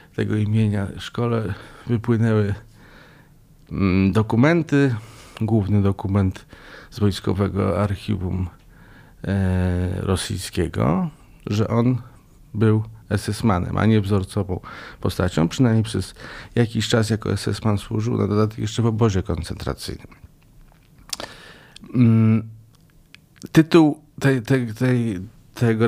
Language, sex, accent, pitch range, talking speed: Polish, male, native, 100-120 Hz, 90 wpm